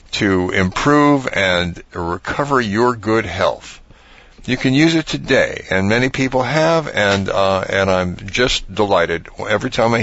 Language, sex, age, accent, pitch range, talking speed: English, male, 50-69, American, 95-130 Hz, 150 wpm